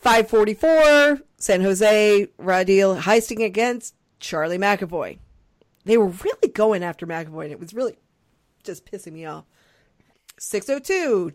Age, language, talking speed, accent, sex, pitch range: 40-59, English, 120 wpm, American, female, 175-245 Hz